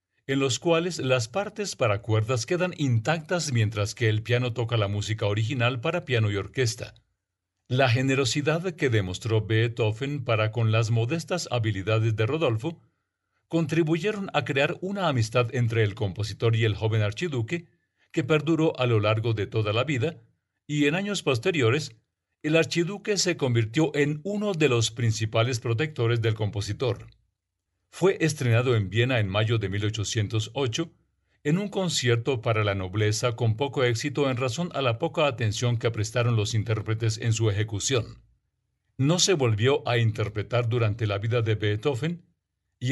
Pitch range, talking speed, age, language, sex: 110-140 Hz, 155 wpm, 50-69, Spanish, male